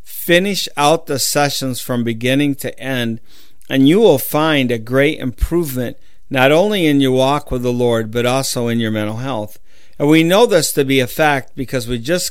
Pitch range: 125-145 Hz